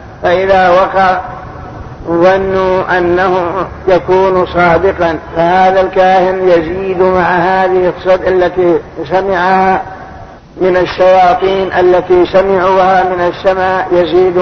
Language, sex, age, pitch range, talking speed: Arabic, male, 60-79, 180-190 Hz, 85 wpm